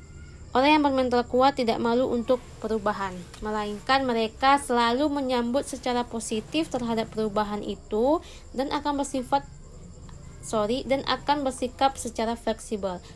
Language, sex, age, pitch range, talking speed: Indonesian, female, 20-39, 210-265 Hz, 120 wpm